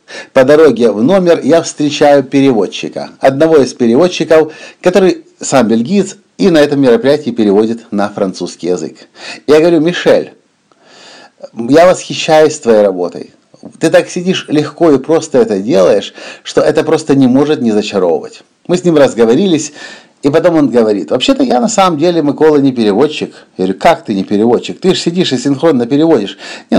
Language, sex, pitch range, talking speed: Russian, male, 110-160 Hz, 160 wpm